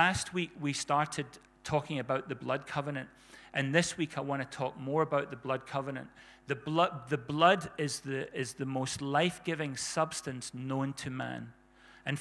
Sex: male